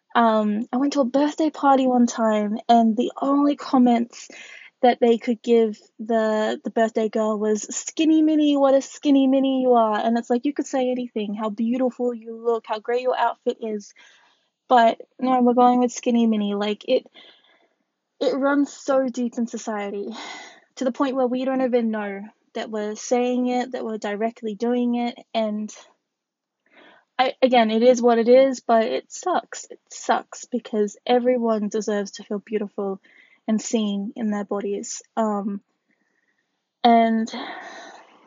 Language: English